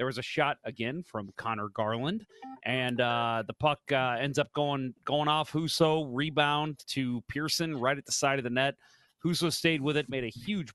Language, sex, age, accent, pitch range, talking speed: English, male, 30-49, American, 120-160 Hz, 200 wpm